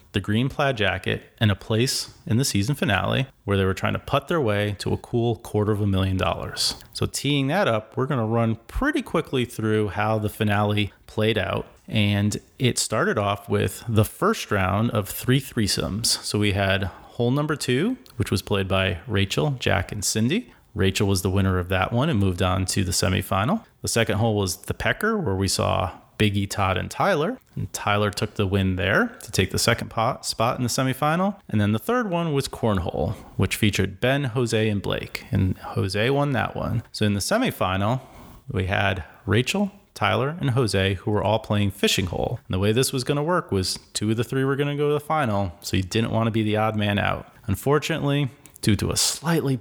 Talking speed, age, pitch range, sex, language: 215 wpm, 30-49, 100-125 Hz, male, English